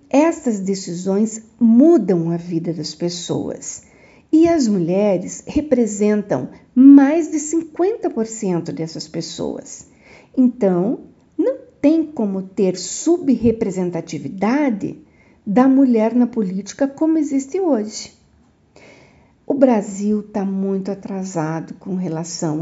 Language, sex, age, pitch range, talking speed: Portuguese, female, 50-69, 185-275 Hz, 95 wpm